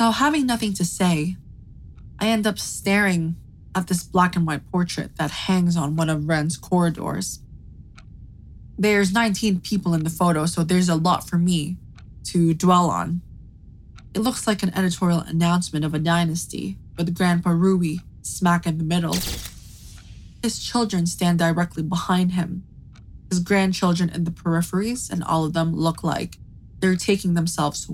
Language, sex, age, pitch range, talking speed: English, female, 20-39, 160-185 Hz, 155 wpm